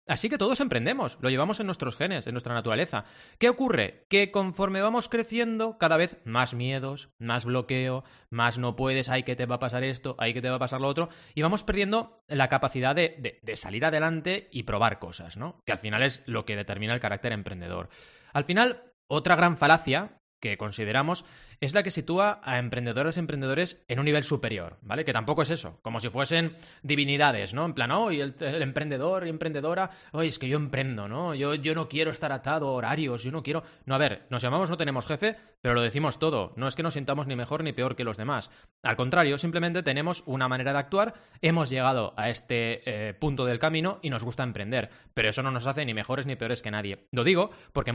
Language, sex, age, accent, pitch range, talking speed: Spanish, male, 20-39, Spanish, 120-160 Hz, 225 wpm